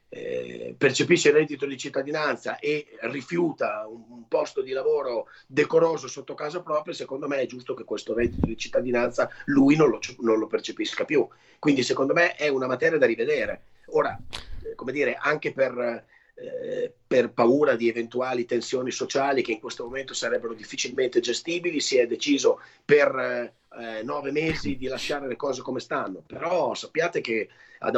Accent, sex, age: native, male, 30-49